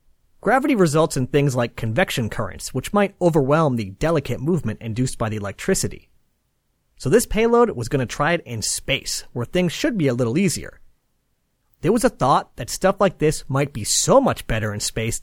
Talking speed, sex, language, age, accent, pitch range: 195 wpm, male, English, 40-59, American, 125-195 Hz